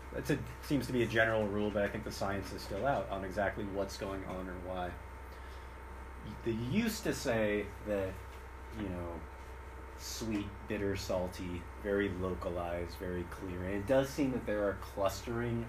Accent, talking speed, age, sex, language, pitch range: American, 170 wpm, 30-49, male, English, 75-100 Hz